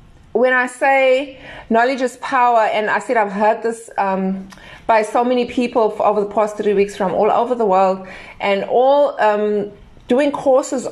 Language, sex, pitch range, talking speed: English, female, 180-240 Hz, 175 wpm